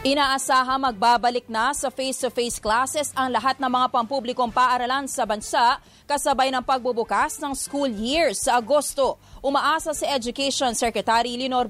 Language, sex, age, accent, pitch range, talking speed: English, female, 30-49, Filipino, 245-285 Hz, 140 wpm